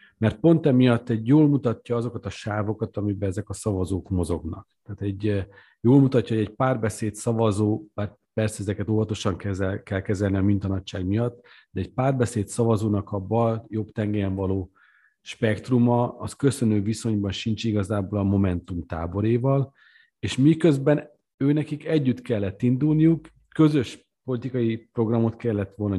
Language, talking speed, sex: Hungarian, 140 wpm, male